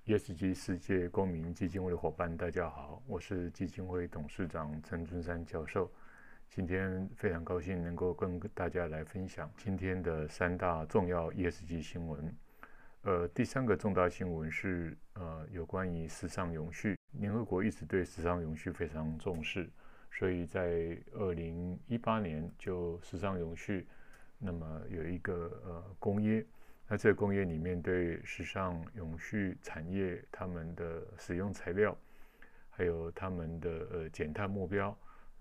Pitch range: 85-95 Hz